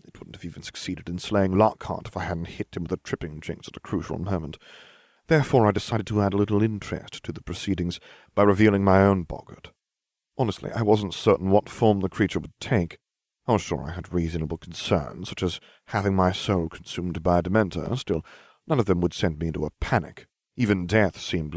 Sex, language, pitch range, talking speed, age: male, English, 85-105 Hz, 210 wpm, 40-59